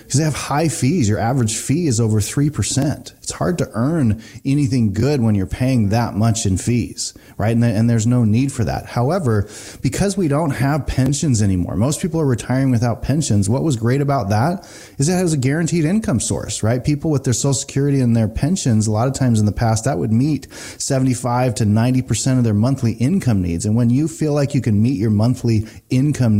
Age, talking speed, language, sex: 30-49, 215 wpm, English, male